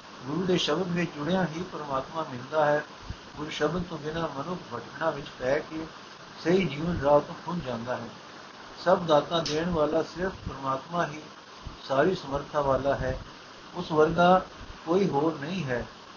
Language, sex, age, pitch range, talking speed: Punjabi, male, 60-79, 145-180 Hz, 155 wpm